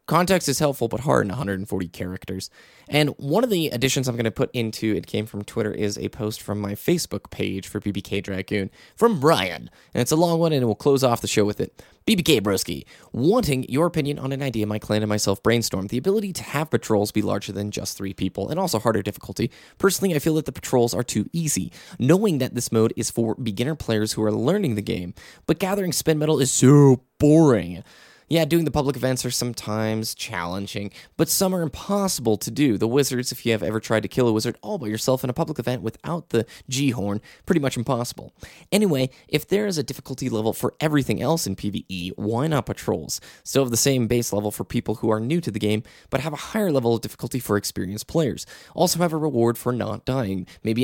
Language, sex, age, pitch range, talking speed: English, male, 20-39, 105-145 Hz, 225 wpm